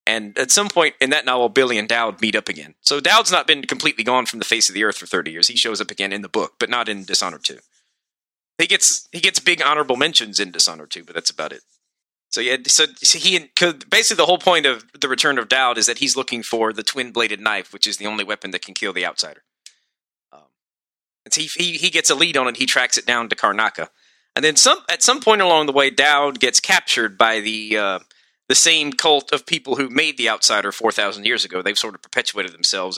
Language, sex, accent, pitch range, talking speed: English, male, American, 110-155 Hz, 245 wpm